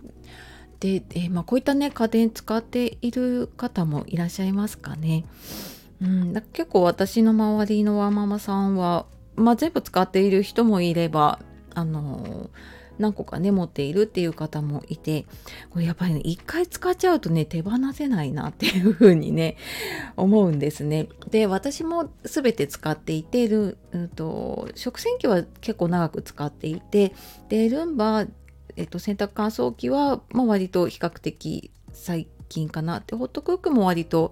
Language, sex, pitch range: Japanese, female, 160-225 Hz